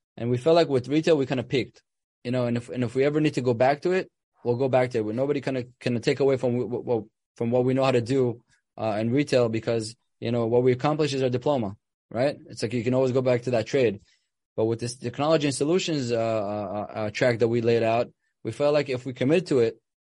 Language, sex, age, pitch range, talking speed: English, male, 20-39, 115-135 Hz, 265 wpm